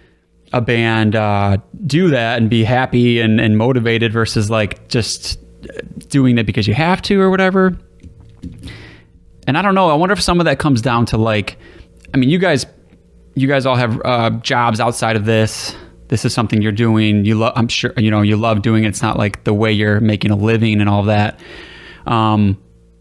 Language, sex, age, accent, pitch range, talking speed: English, male, 20-39, American, 105-130 Hz, 200 wpm